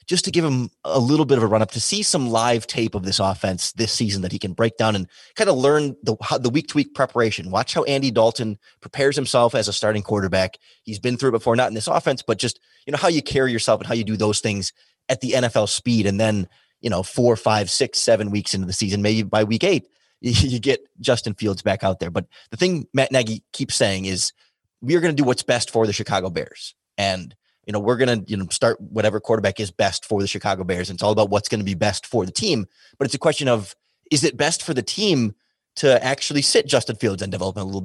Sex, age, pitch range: male, 30-49, 105-135 Hz